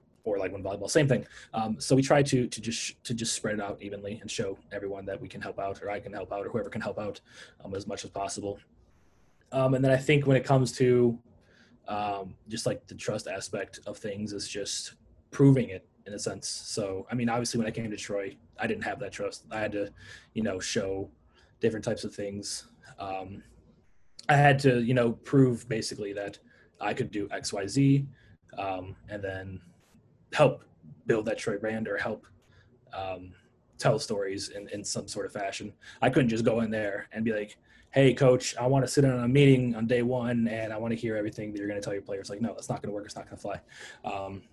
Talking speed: 235 wpm